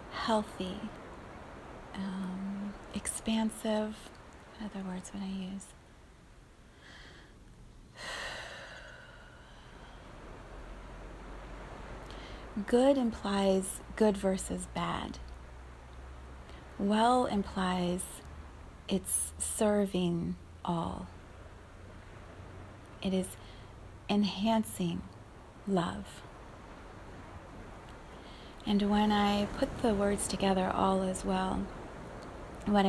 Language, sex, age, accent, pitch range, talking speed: English, female, 30-49, American, 175-210 Hz, 60 wpm